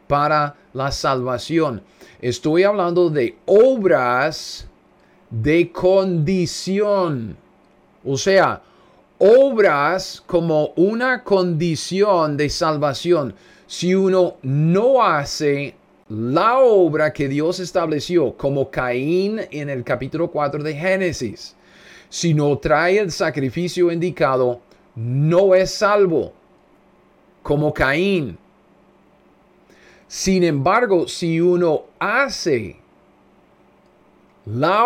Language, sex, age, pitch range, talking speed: Spanish, male, 30-49, 140-185 Hz, 90 wpm